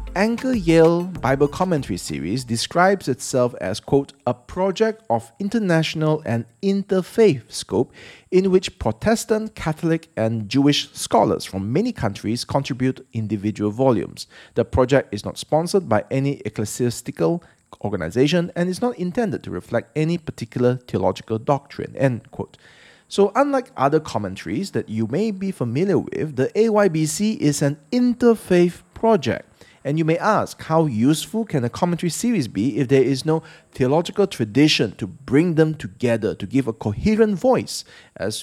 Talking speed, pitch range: 145 wpm, 115-180 Hz